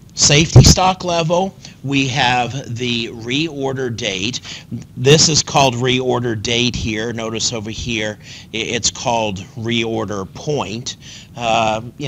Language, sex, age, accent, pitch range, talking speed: English, male, 50-69, American, 115-140 Hz, 115 wpm